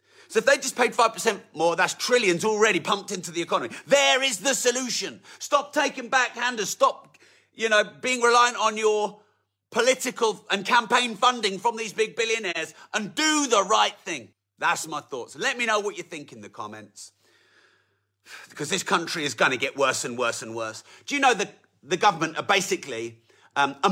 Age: 40-59